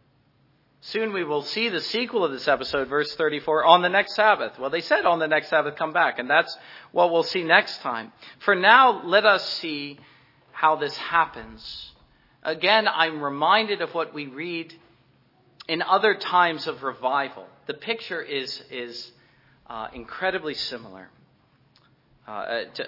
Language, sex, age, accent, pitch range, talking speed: English, male, 40-59, American, 135-180 Hz, 155 wpm